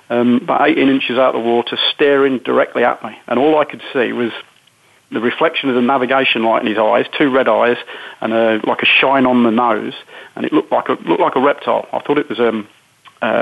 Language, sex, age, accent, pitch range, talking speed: English, male, 40-59, British, 120-140 Hz, 230 wpm